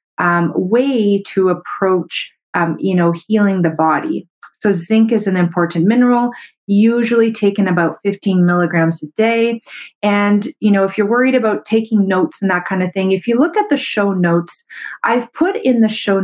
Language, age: English, 30-49